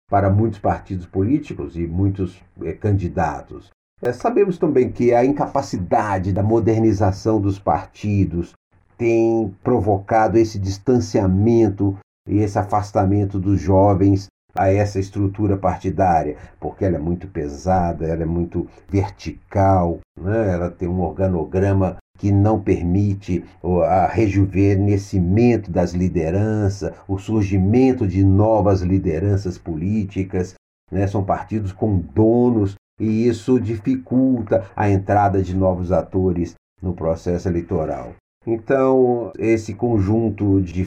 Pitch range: 90-105 Hz